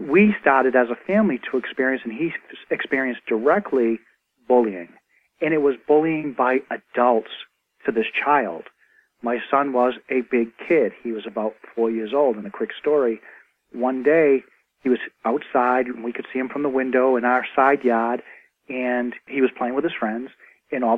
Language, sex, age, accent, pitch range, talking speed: English, male, 40-59, American, 120-140 Hz, 180 wpm